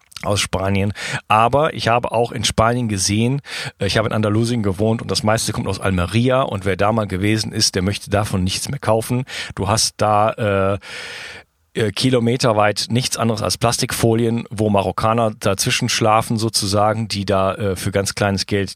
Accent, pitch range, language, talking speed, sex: German, 100-115 Hz, German, 170 wpm, male